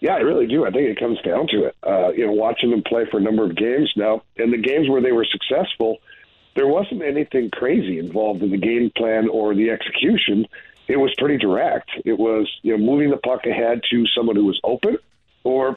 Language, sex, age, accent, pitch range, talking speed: English, male, 50-69, American, 115-135 Hz, 230 wpm